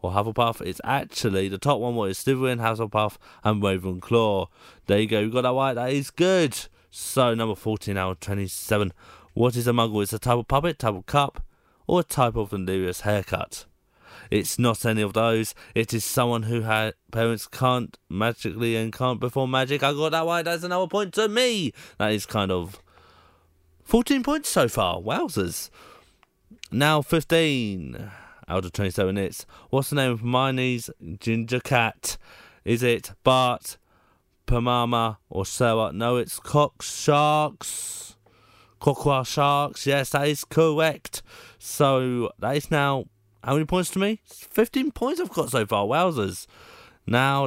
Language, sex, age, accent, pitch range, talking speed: English, male, 20-39, British, 100-140 Hz, 165 wpm